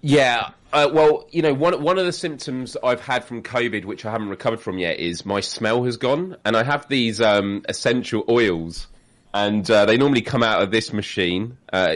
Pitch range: 95-115 Hz